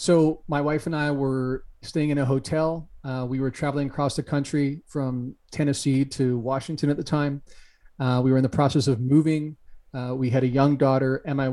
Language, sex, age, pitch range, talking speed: English, male, 40-59, 130-150 Hz, 210 wpm